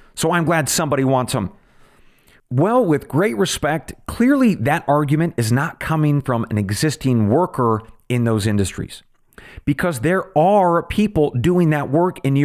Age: 40-59